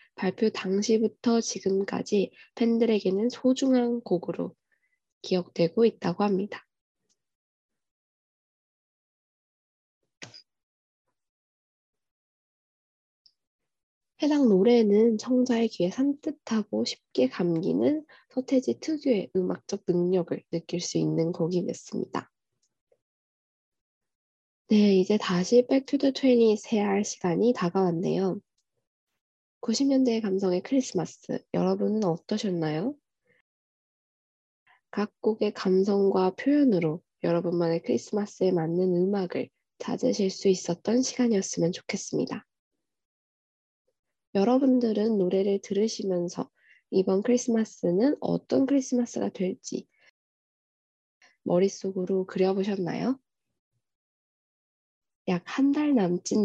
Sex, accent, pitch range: female, native, 185-240 Hz